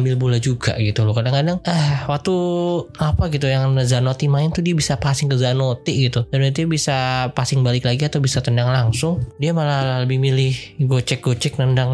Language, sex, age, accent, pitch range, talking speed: Indonesian, male, 20-39, native, 115-145 Hz, 180 wpm